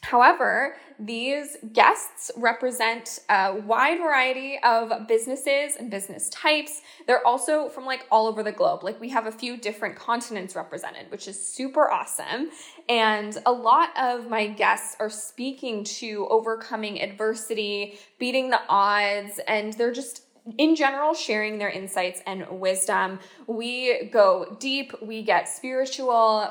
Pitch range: 205-265 Hz